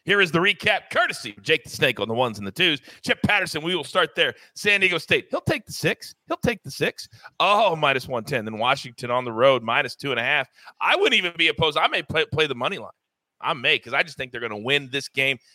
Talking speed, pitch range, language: 265 wpm, 140-180 Hz, English